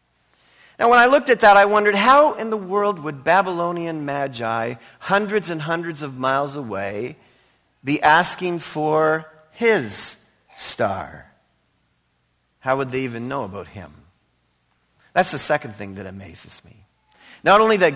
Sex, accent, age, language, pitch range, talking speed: male, American, 40-59, English, 110-170 Hz, 145 wpm